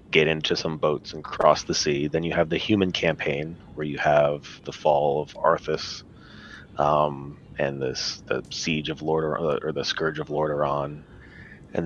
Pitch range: 75-90 Hz